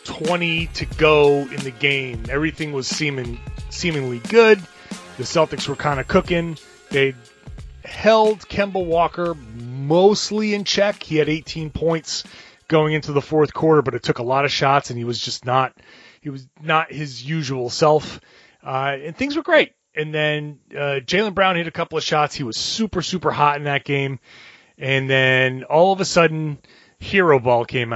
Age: 30-49